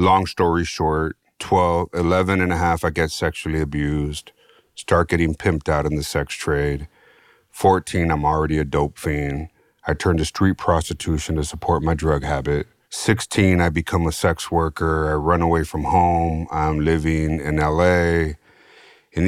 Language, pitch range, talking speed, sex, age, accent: English, 75-85 Hz, 160 wpm, male, 30-49, American